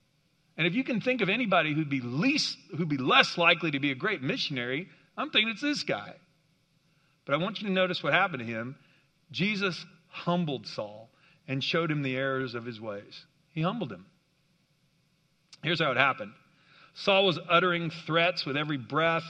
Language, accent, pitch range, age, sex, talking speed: English, American, 150-180 Hz, 50-69, male, 185 wpm